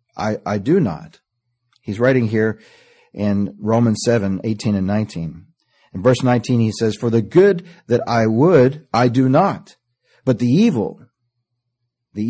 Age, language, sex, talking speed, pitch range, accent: 40-59, English, male, 150 wpm, 100-125 Hz, American